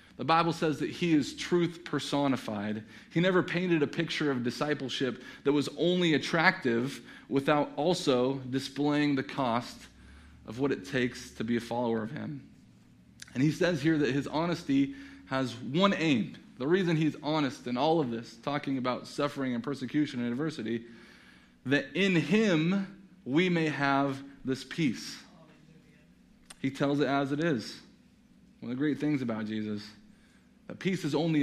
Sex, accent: male, American